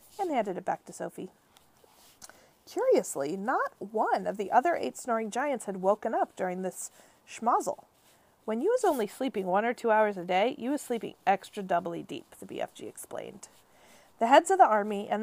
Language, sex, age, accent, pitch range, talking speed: English, female, 40-59, American, 190-260 Hz, 185 wpm